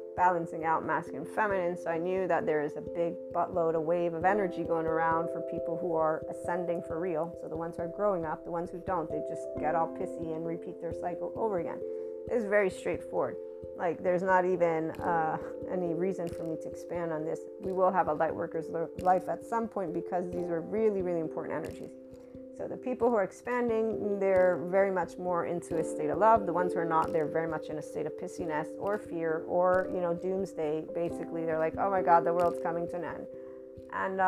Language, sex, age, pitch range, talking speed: English, female, 30-49, 160-185 Hz, 225 wpm